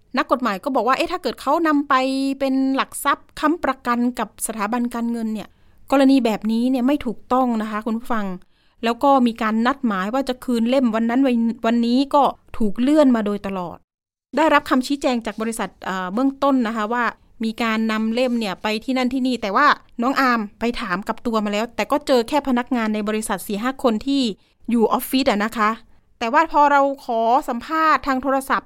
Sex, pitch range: female, 220-270 Hz